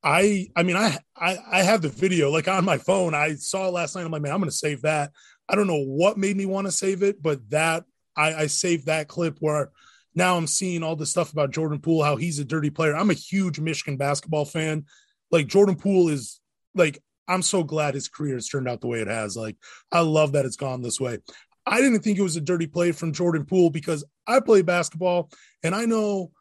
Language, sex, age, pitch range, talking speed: English, male, 20-39, 155-190 Hz, 245 wpm